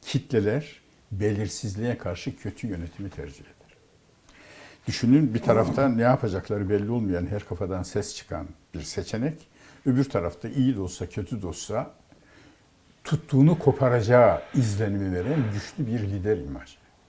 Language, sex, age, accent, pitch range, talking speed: Turkish, male, 60-79, native, 100-135 Hz, 125 wpm